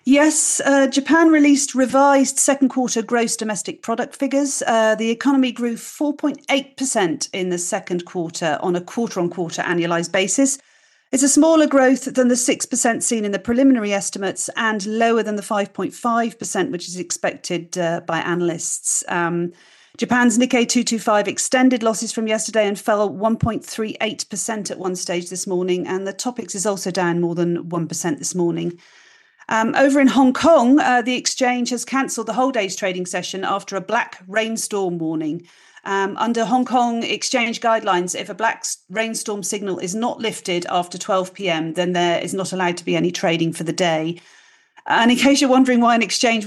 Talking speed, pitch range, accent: 170 wpm, 180-245 Hz, British